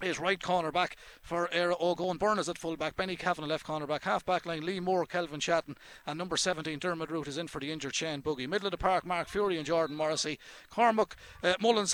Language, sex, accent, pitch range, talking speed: English, male, Irish, 160-190 Hz, 225 wpm